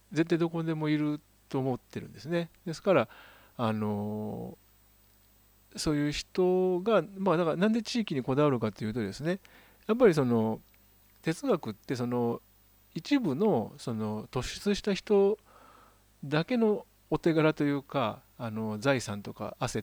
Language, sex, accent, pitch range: Japanese, male, native, 110-170 Hz